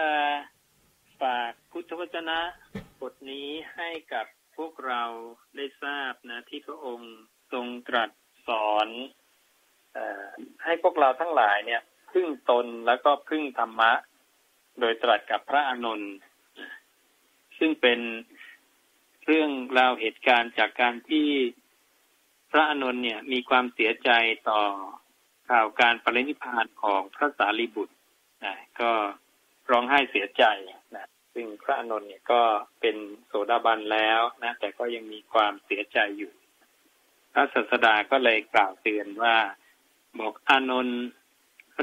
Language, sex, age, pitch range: Thai, male, 20-39, 115-145 Hz